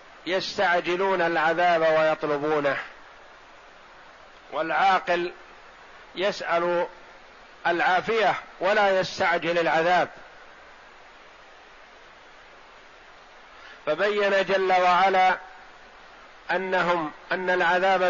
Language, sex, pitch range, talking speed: Arabic, male, 160-180 Hz, 50 wpm